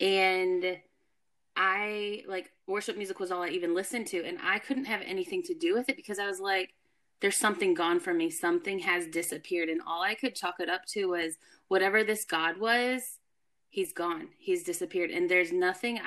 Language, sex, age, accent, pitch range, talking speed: English, female, 20-39, American, 175-235 Hz, 195 wpm